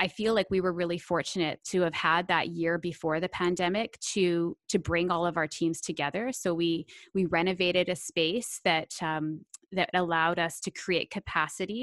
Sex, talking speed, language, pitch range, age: female, 185 wpm, English, 170-195 Hz, 20-39